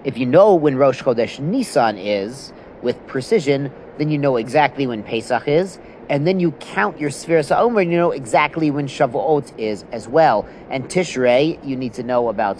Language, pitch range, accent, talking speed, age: English, 125-160 Hz, American, 190 wpm, 40-59